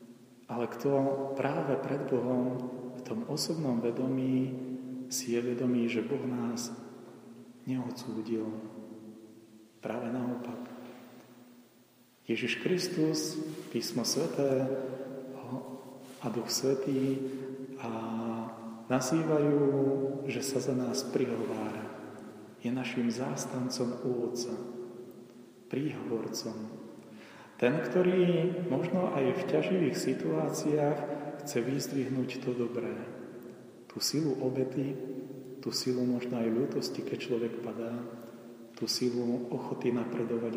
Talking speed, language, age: 95 wpm, Slovak, 40-59